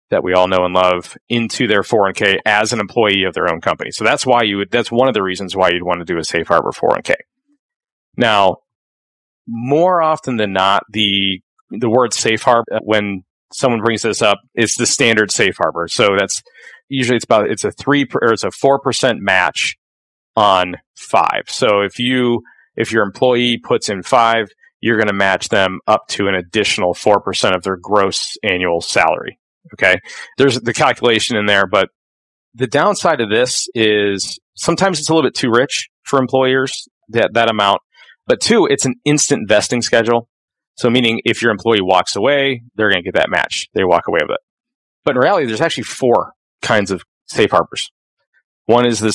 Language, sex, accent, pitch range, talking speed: English, male, American, 100-135 Hz, 195 wpm